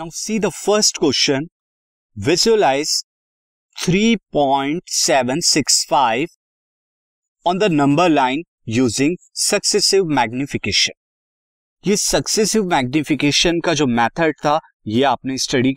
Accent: native